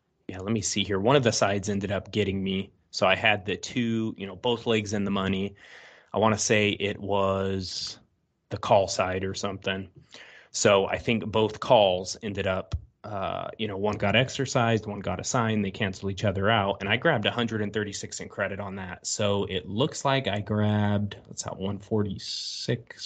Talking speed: 195 wpm